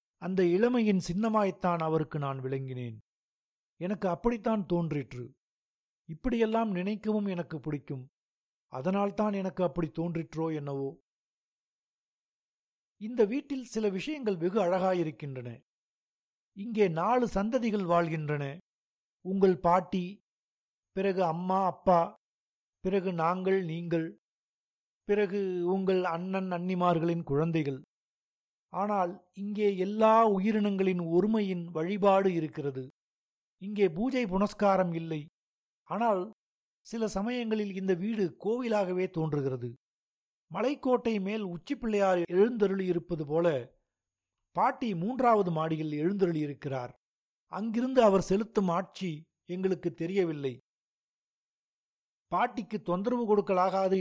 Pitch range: 160-205 Hz